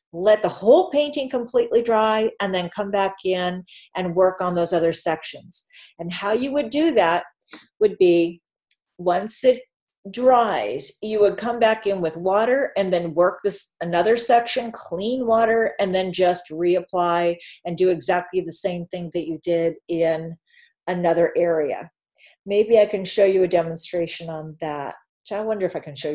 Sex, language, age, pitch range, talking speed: female, English, 40-59, 175-225 Hz, 170 wpm